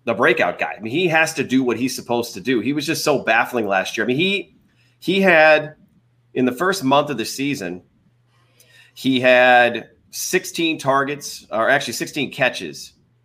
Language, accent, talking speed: English, American, 185 wpm